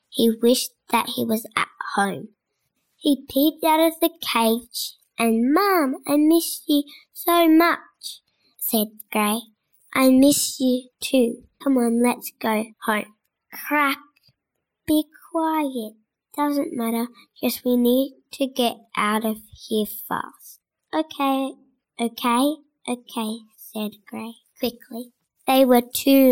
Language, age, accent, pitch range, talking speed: English, 10-29, Australian, 220-275 Hz, 125 wpm